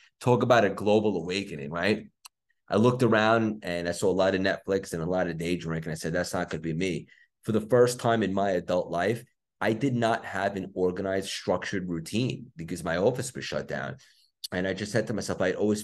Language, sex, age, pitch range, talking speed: English, male, 30-49, 90-110 Hz, 230 wpm